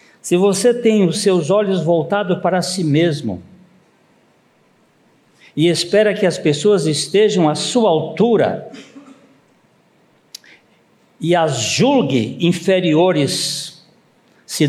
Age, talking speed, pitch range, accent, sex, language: 60-79, 100 wpm, 140-185 Hz, Brazilian, male, Portuguese